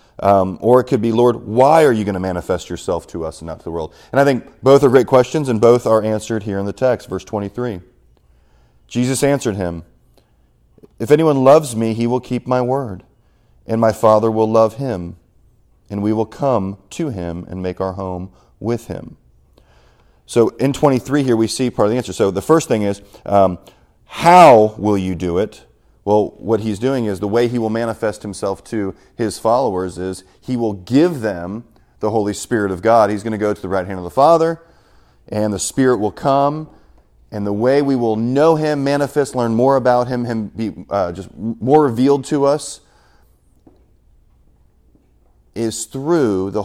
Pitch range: 100-125 Hz